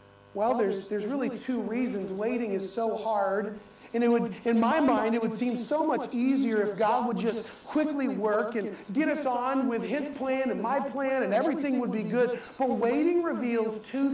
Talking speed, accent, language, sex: 200 wpm, American, English, male